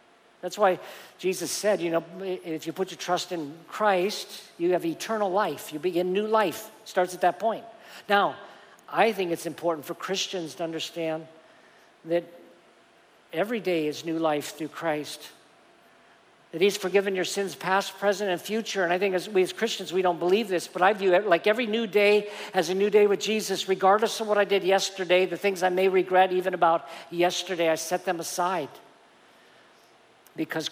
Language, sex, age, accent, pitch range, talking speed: English, male, 50-69, American, 170-200 Hz, 190 wpm